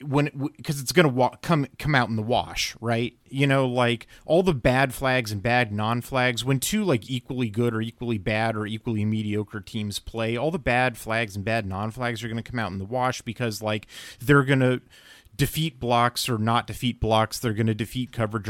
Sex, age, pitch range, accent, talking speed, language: male, 30-49, 110-135 Hz, American, 225 wpm, English